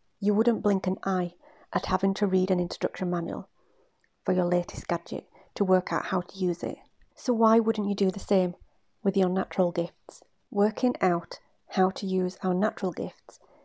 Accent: British